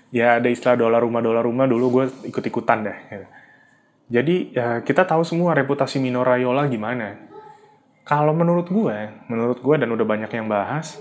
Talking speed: 160 wpm